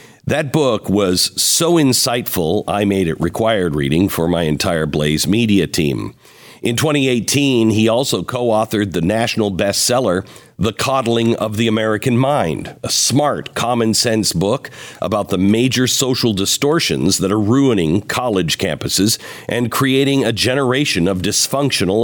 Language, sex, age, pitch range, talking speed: English, male, 50-69, 95-125 Hz, 135 wpm